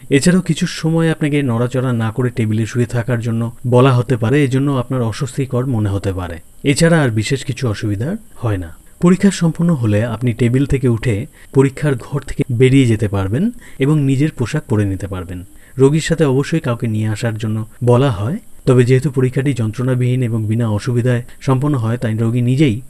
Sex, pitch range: male, 110-140 Hz